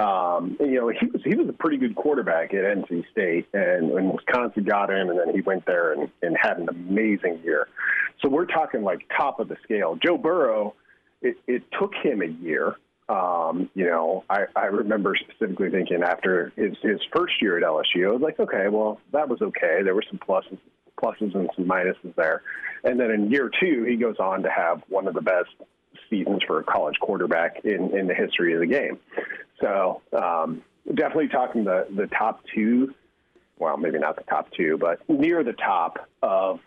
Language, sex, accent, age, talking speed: English, male, American, 40-59, 200 wpm